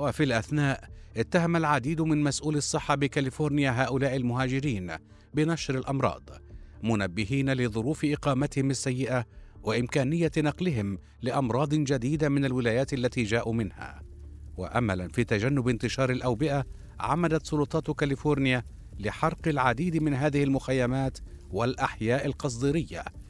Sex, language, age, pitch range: male, Arabic, 50-69, 110-145 Hz